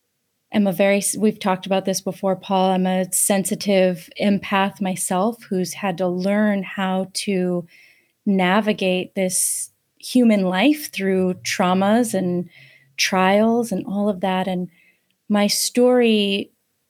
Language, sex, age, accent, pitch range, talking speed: English, female, 30-49, American, 185-205 Hz, 125 wpm